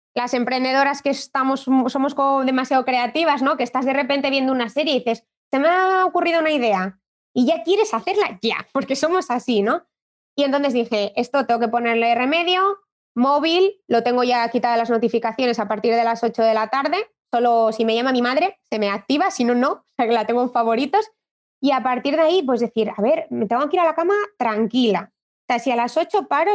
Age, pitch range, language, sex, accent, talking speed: 20-39, 225-300 Hz, Spanish, female, Spanish, 225 wpm